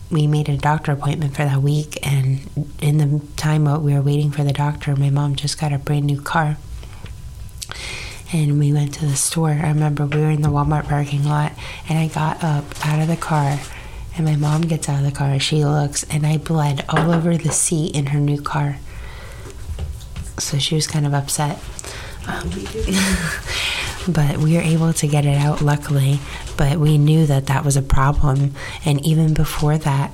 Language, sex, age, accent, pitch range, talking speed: English, female, 20-39, American, 140-155 Hz, 195 wpm